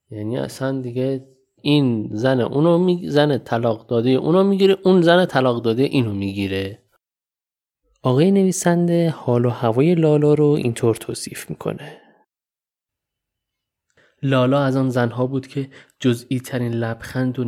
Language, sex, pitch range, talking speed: Persian, male, 110-135 Hz, 130 wpm